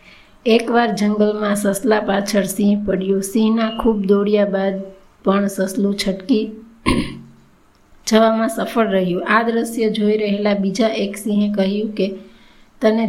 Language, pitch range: Gujarati, 195-215 Hz